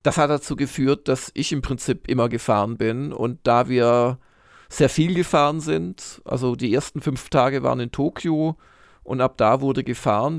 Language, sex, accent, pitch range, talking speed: German, male, German, 120-140 Hz, 180 wpm